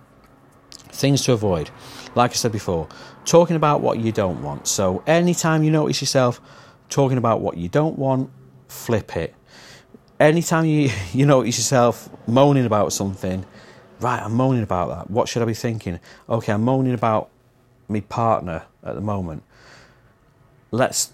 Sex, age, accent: male, 40-59, British